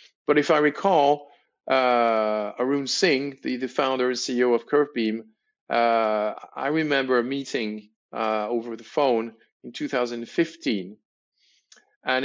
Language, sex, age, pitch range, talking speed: English, male, 40-59, 115-145 Hz, 120 wpm